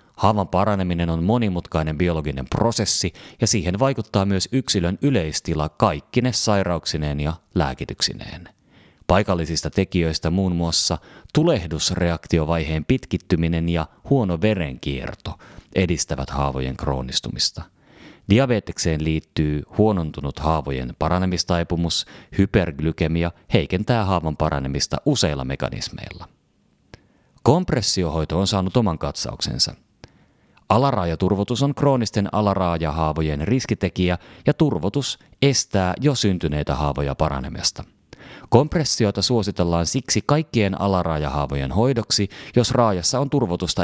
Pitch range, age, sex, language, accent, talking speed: 80-115 Hz, 30-49, male, Finnish, native, 90 wpm